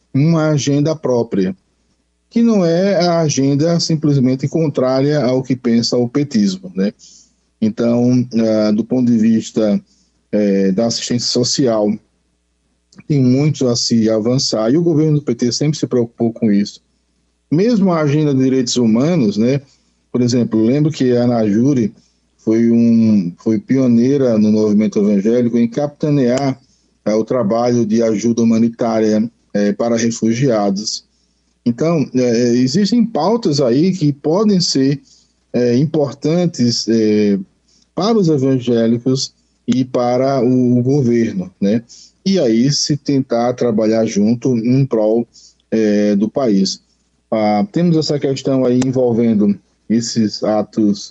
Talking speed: 125 wpm